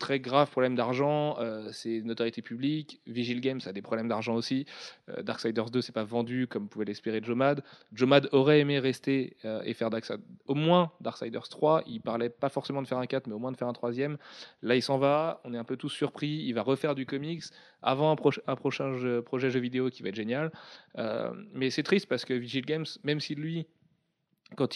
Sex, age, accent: male, 30-49, French